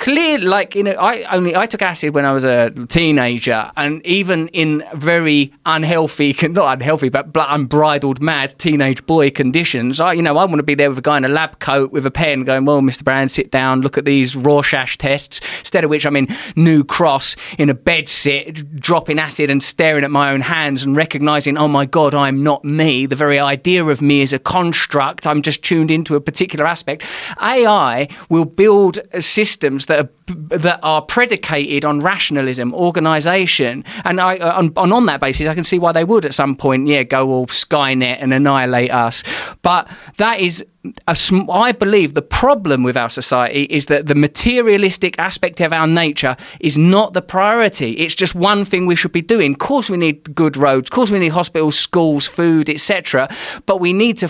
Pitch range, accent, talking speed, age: 140-180 Hz, British, 200 wpm, 20-39